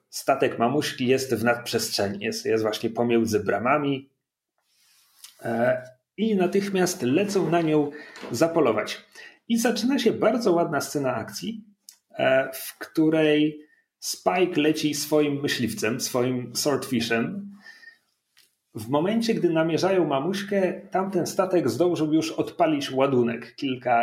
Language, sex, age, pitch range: Polish, male, 40-59, 120-180 Hz